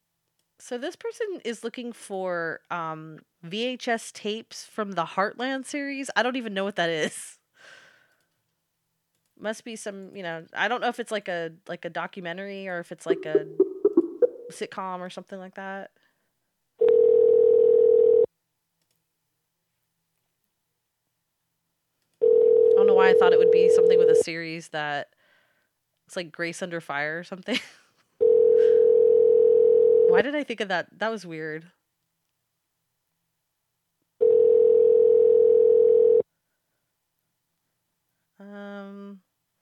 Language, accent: English, American